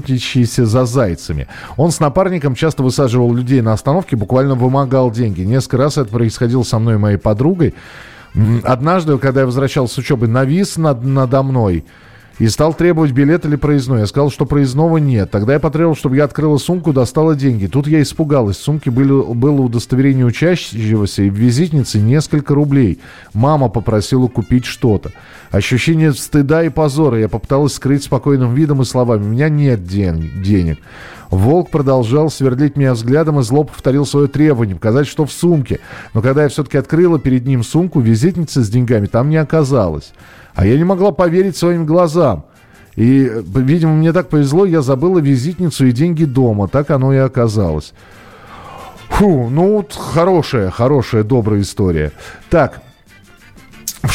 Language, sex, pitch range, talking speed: Russian, male, 115-150 Hz, 160 wpm